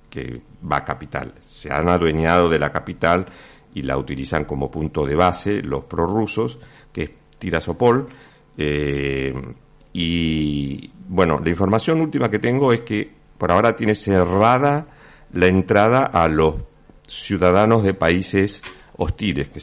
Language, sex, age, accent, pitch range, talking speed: Spanish, male, 50-69, Argentinian, 80-115 Hz, 140 wpm